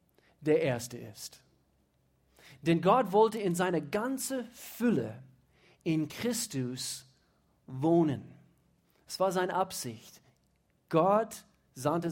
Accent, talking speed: German, 95 wpm